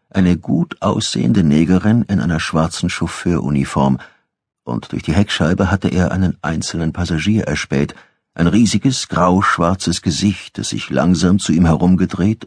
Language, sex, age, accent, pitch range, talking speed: German, male, 50-69, German, 75-100 Hz, 135 wpm